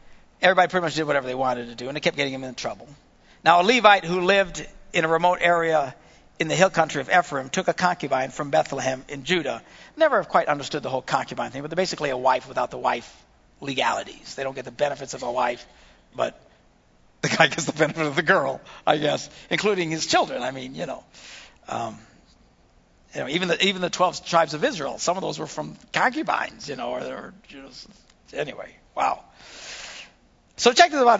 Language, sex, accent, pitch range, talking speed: English, male, American, 130-185 Hz, 210 wpm